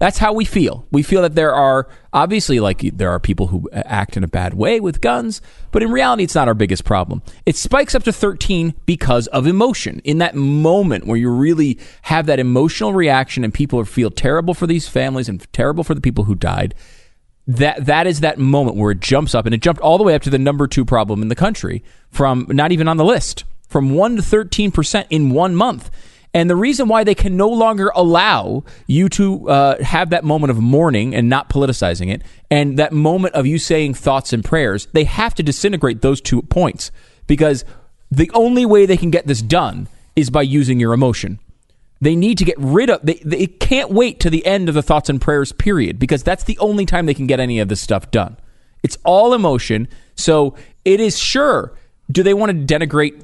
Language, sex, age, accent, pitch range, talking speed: English, male, 30-49, American, 120-180 Hz, 220 wpm